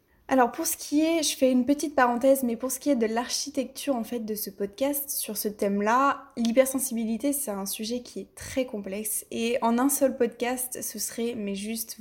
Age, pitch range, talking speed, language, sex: 20-39, 220-270 Hz, 210 wpm, French, female